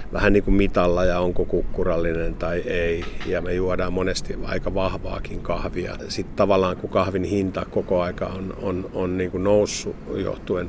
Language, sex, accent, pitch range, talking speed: Finnish, male, native, 90-95 Hz, 165 wpm